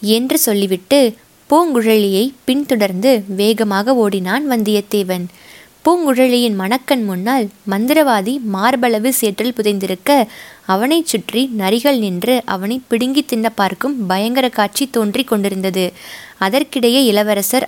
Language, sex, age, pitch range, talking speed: Tamil, female, 20-39, 200-260 Hz, 90 wpm